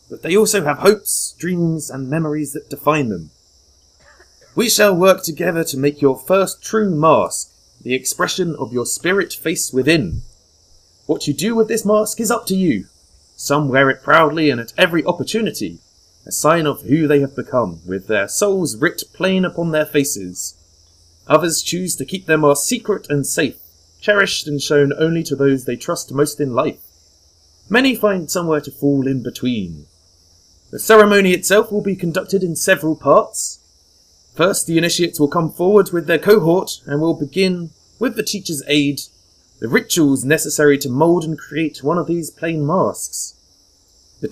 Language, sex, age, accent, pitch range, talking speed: English, male, 30-49, British, 115-180 Hz, 170 wpm